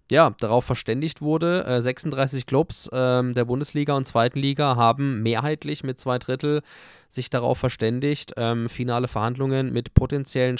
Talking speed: 130 wpm